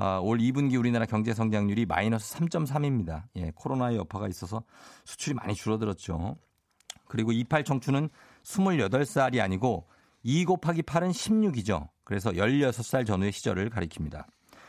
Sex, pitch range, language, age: male, 105-150 Hz, Korean, 50-69